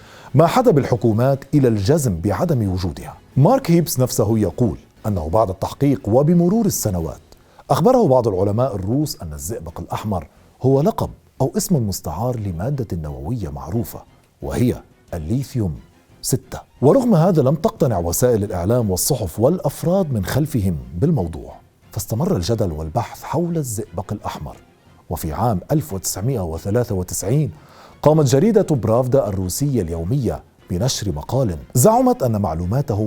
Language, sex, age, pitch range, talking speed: Arabic, male, 40-59, 95-140 Hz, 115 wpm